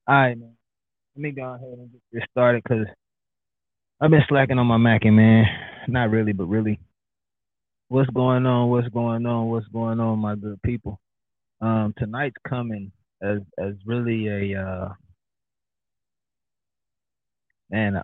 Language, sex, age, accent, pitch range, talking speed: English, male, 20-39, American, 100-120 Hz, 145 wpm